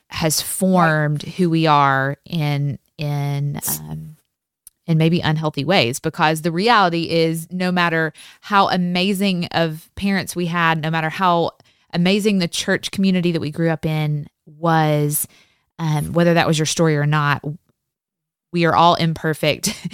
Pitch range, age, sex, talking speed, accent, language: 150-175 Hz, 20-39, female, 145 wpm, American, English